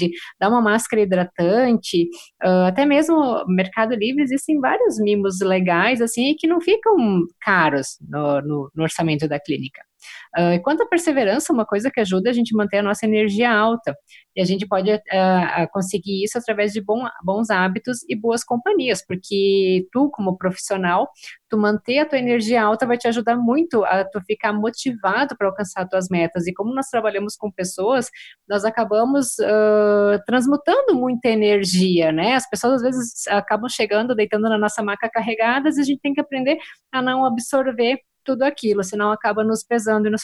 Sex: female